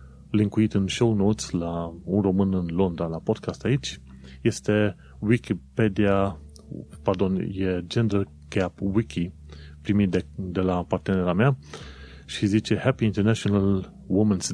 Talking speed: 125 wpm